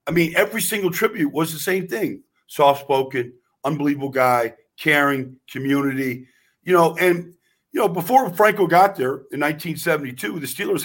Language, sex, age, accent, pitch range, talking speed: English, male, 50-69, American, 135-170 Hz, 150 wpm